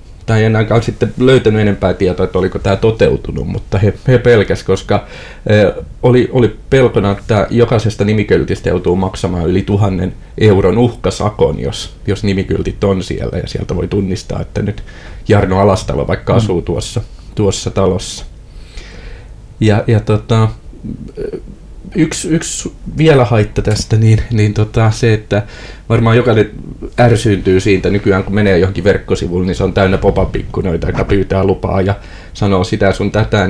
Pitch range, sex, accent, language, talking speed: 95-110 Hz, male, native, Finnish, 145 wpm